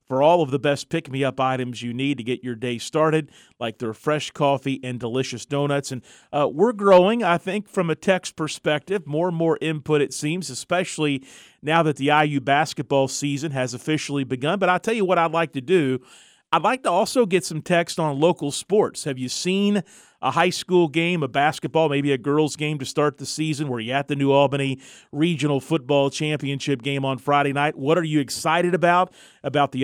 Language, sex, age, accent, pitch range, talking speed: English, male, 40-59, American, 130-155 Hz, 205 wpm